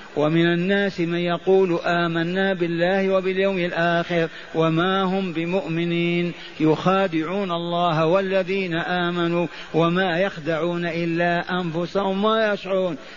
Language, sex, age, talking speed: Arabic, male, 50-69, 95 wpm